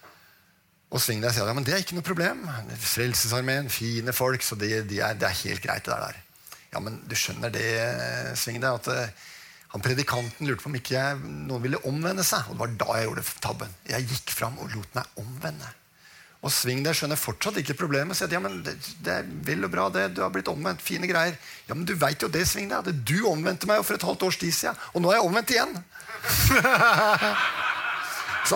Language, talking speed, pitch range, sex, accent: English, 220 wpm, 110-165 Hz, male, Swedish